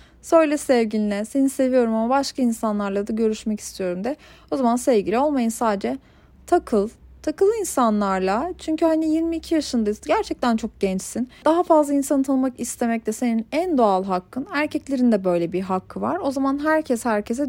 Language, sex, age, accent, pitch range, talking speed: Turkish, female, 30-49, native, 220-295 Hz, 160 wpm